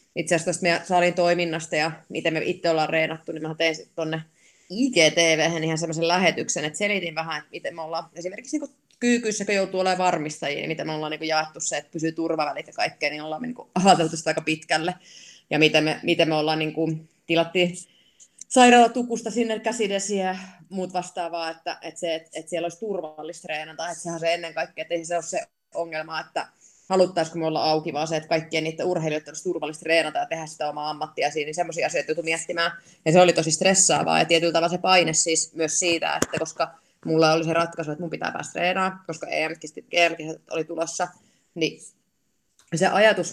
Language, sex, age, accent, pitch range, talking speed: Finnish, female, 20-39, native, 160-180 Hz, 190 wpm